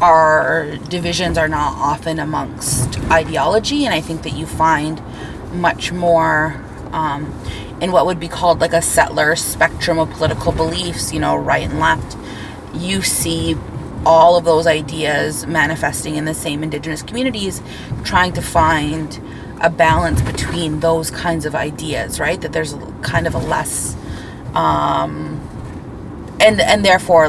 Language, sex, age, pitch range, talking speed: English, female, 30-49, 140-170 Hz, 145 wpm